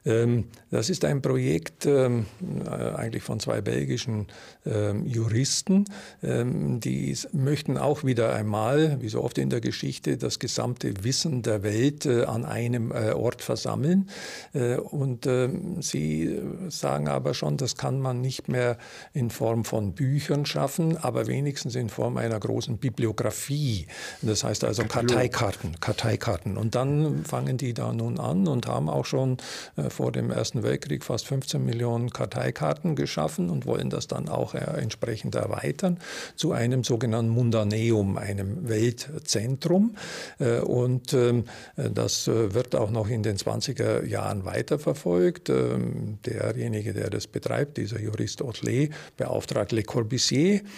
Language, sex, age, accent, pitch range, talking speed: German, male, 50-69, German, 110-135 Hz, 130 wpm